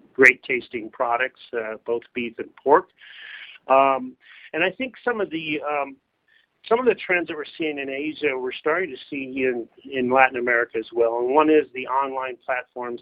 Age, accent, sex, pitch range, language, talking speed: 40-59, American, male, 125-160 Hz, English, 190 wpm